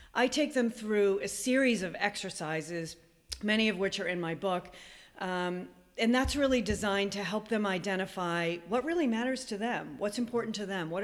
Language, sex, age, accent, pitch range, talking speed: English, female, 40-59, American, 180-240 Hz, 185 wpm